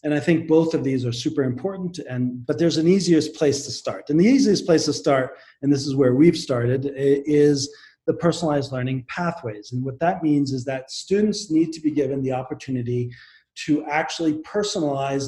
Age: 40-59